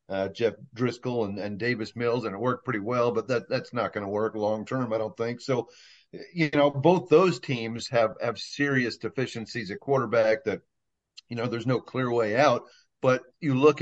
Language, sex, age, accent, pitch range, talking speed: English, male, 40-59, American, 110-130 Hz, 205 wpm